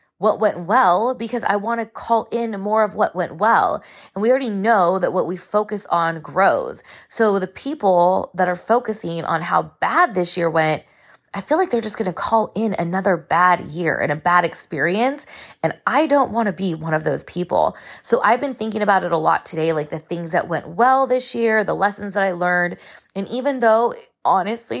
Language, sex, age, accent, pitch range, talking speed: English, female, 20-39, American, 170-215 Hz, 215 wpm